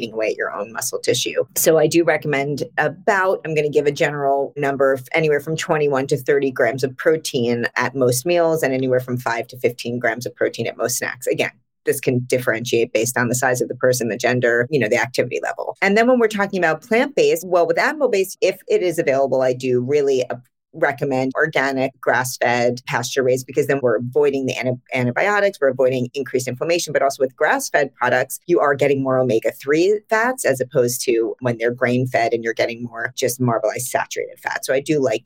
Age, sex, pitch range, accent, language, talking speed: 40-59, female, 130-180 Hz, American, English, 210 wpm